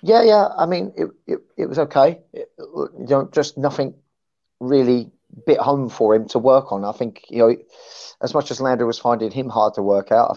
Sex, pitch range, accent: male, 110-145 Hz, British